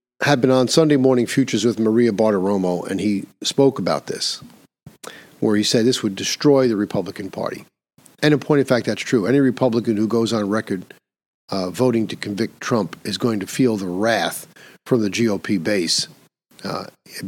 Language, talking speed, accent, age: English, 180 wpm, American, 50-69